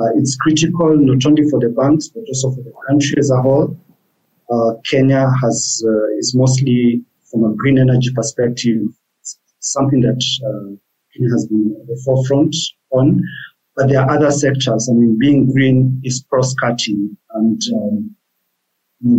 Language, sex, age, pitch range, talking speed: English, male, 50-69, 115-135 Hz, 155 wpm